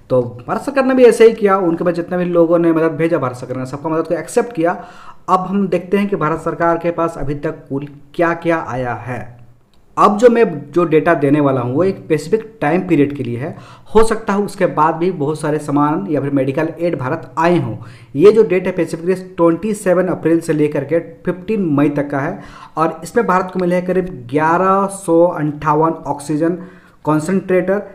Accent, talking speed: native, 205 wpm